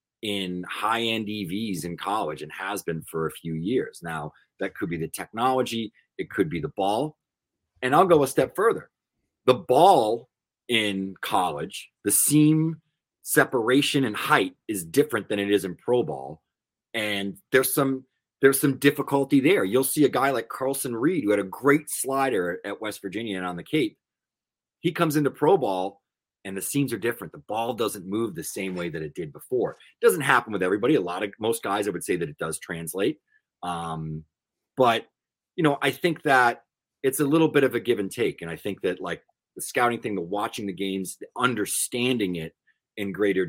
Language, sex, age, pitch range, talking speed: English, male, 30-49, 95-135 Hz, 195 wpm